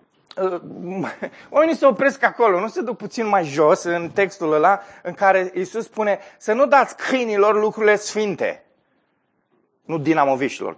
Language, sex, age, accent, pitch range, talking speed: Romanian, male, 30-49, native, 145-210 Hz, 140 wpm